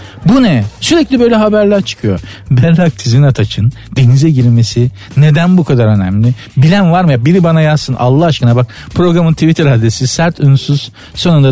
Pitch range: 125-175 Hz